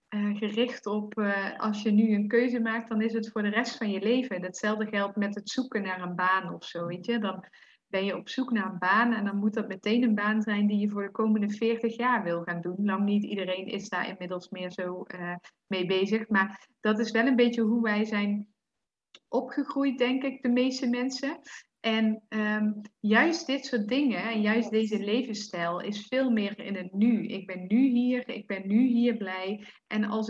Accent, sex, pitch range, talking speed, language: Dutch, female, 200-230 Hz, 215 wpm, English